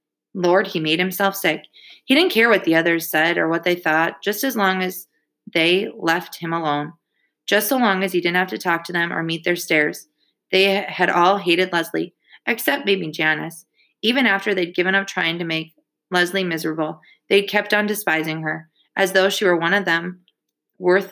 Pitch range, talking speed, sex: 165-200 Hz, 200 wpm, female